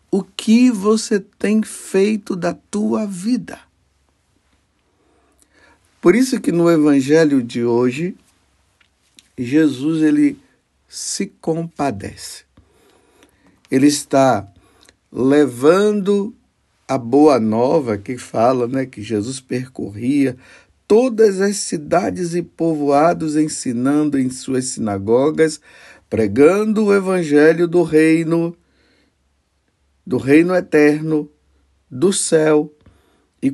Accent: Brazilian